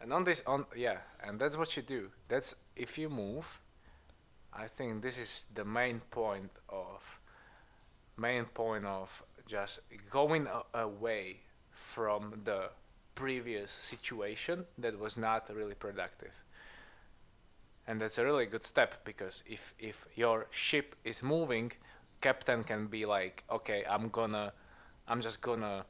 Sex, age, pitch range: male, 20-39, 105-125 Hz